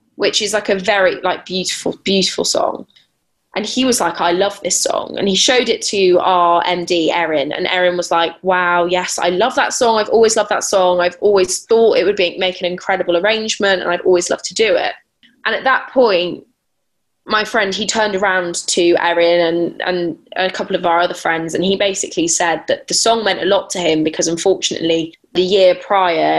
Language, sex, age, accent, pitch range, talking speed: English, female, 10-29, British, 175-200 Hz, 210 wpm